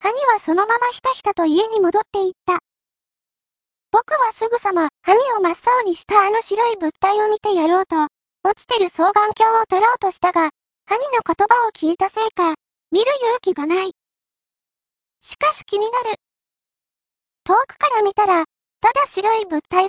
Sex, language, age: male, Japanese, 40-59